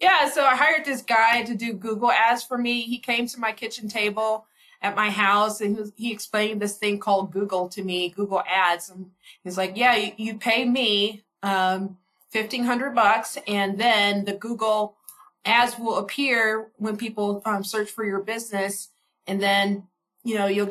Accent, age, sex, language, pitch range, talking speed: American, 20-39, female, English, 200-250 Hz, 170 wpm